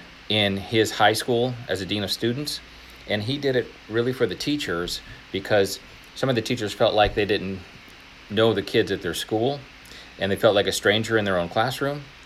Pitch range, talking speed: 95-115 Hz, 205 wpm